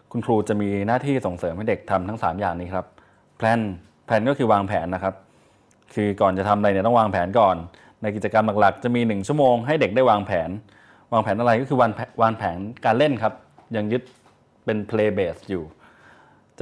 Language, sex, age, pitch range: Thai, male, 20-39, 100-120 Hz